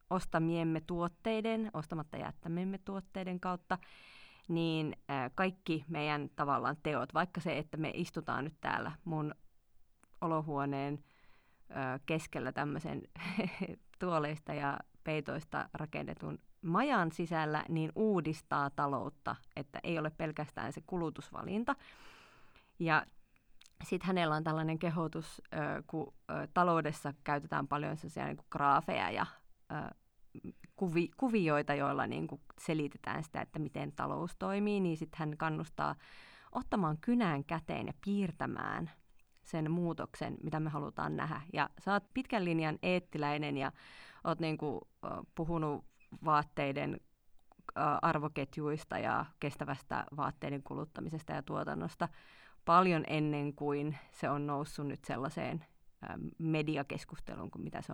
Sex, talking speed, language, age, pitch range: female, 115 wpm, Finnish, 30-49, 150-175 Hz